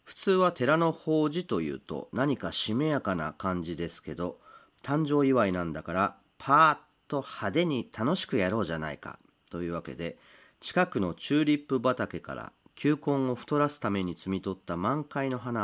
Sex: male